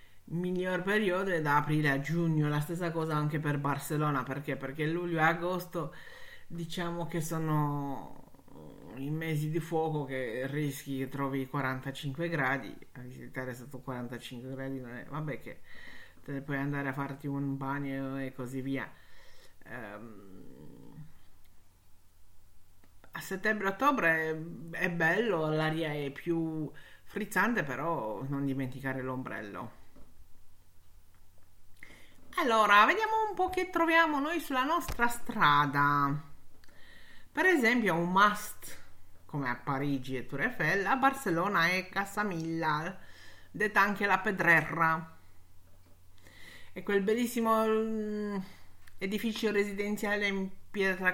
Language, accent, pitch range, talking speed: Italian, native, 130-185 Hz, 115 wpm